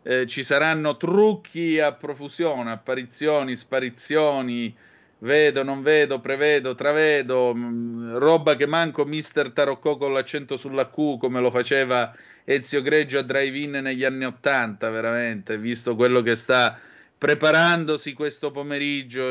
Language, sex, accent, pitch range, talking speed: Italian, male, native, 125-150 Hz, 125 wpm